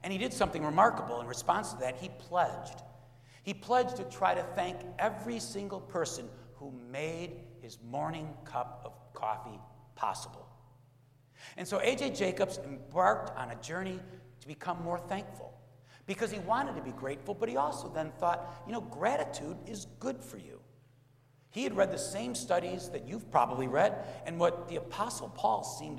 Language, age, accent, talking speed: English, 60-79, American, 170 wpm